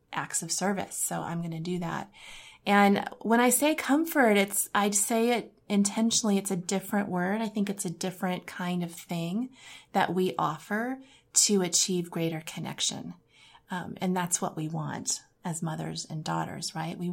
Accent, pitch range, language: American, 170-215 Hz, English